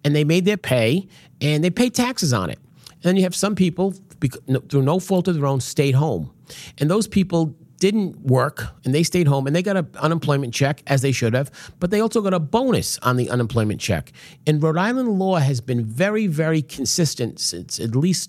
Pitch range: 135-180 Hz